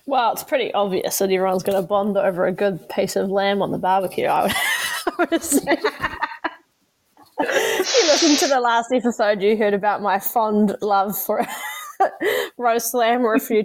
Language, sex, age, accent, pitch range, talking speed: English, female, 10-29, Australian, 195-245 Hz, 180 wpm